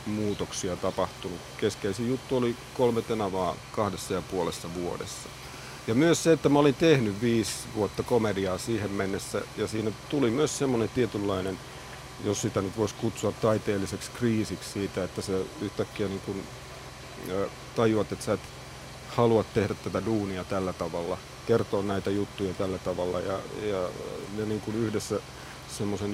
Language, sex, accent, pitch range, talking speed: Finnish, male, native, 100-120 Hz, 145 wpm